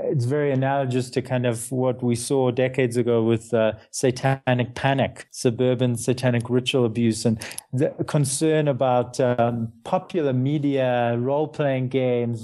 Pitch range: 120-145 Hz